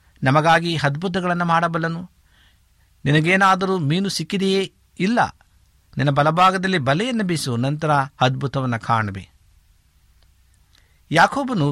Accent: native